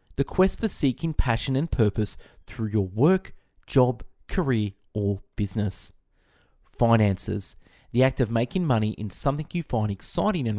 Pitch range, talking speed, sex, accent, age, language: 100-140 Hz, 145 wpm, male, Australian, 20-39, English